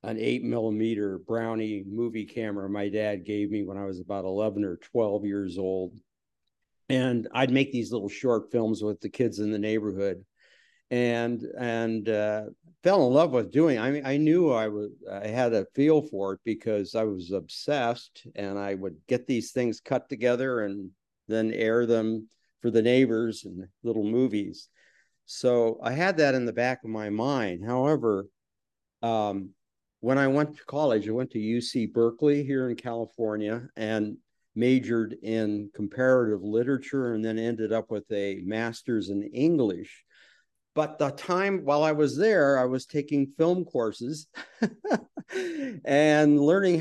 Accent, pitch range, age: American, 105-135 Hz, 50-69